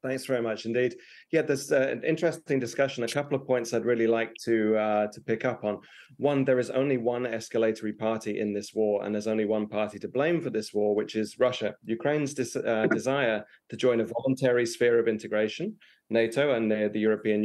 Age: 30-49